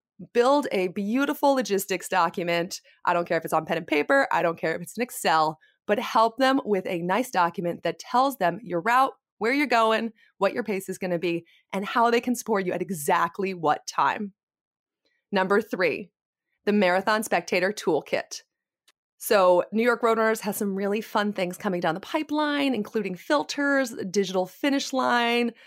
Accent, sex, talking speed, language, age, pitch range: American, female, 180 wpm, English, 20-39, 195-260 Hz